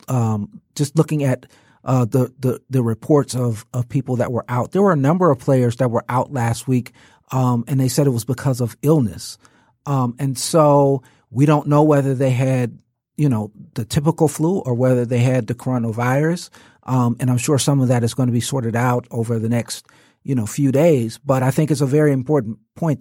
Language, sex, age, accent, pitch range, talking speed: English, male, 50-69, American, 120-150 Hz, 215 wpm